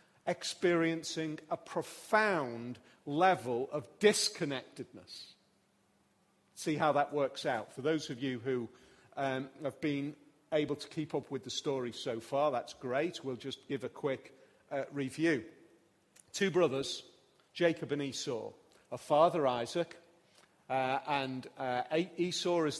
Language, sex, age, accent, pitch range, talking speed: English, male, 40-59, British, 130-160 Hz, 130 wpm